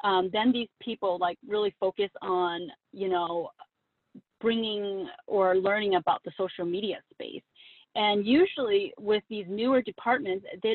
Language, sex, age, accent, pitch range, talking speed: English, female, 30-49, American, 190-260 Hz, 140 wpm